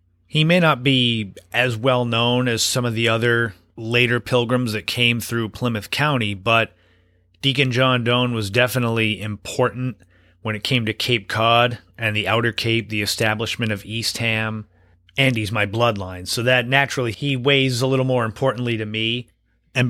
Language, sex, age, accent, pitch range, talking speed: English, male, 30-49, American, 110-125 Hz, 170 wpm